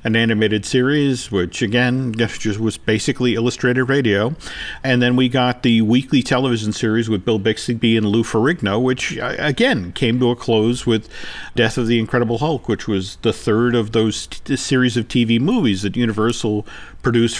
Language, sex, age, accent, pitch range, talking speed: English, male, 50-69, American, 110-150 Hz, 170 wpm